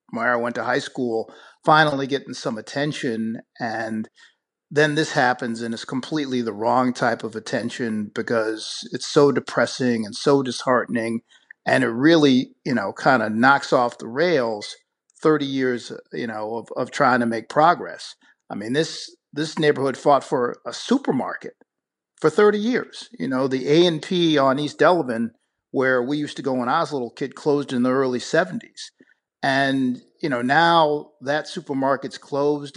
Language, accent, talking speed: English, American, 170 wpm